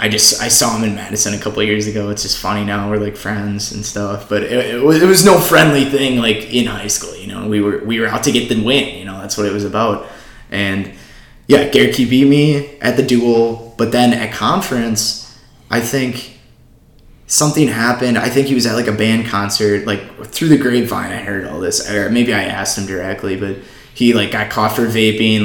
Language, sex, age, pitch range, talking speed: English, male, 20-39, 105-125 Hz, 230 wpm